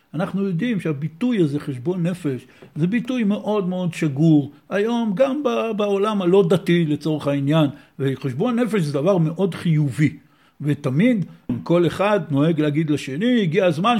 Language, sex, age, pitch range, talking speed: Hebrew, male, 60-79, 150-195 Hz, 135 wpm